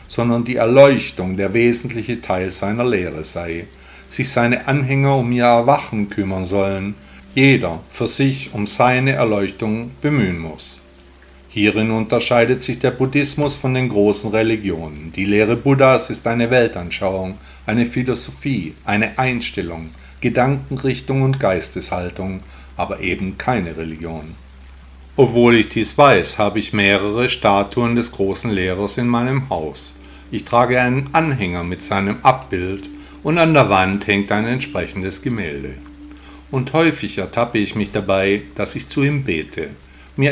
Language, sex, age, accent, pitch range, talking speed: German, male, 50-69, German, 90-125 Hz, 135 wpm